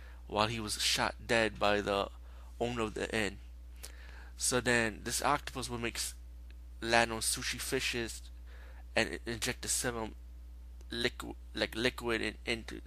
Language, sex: English, male